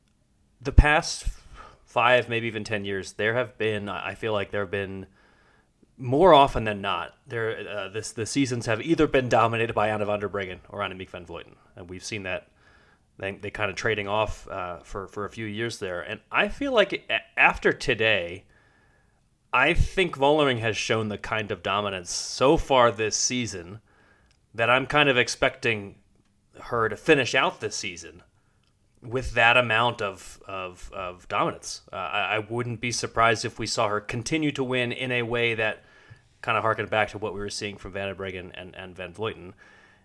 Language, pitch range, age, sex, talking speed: English, 100-125 Hz, 30-49, male, 190 wpm